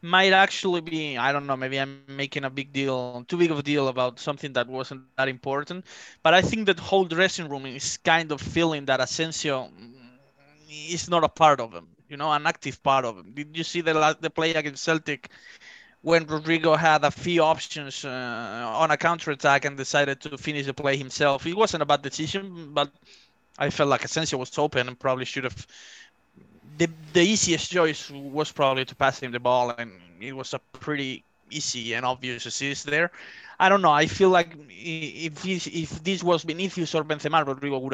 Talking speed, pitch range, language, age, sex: 200 wpm, 130-155 Hz, English, 20-39, male